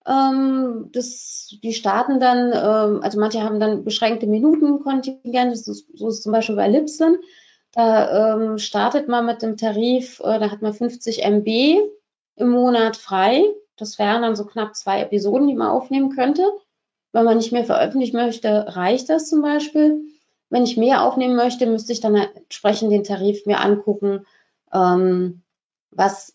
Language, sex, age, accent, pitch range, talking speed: German, female, 30-49, German, 210-255 Hz, 160 wpm